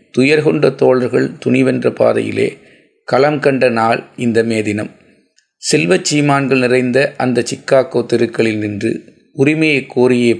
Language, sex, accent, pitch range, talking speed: Tamil, male, native, 115-135 Hz, 100 wpm